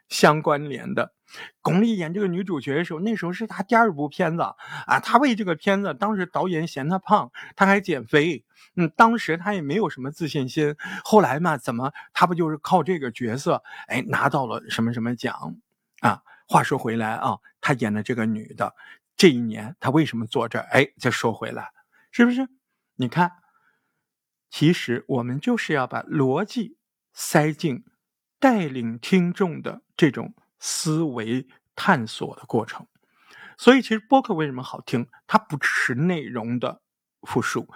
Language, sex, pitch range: Chinese, male, 140-205 Hz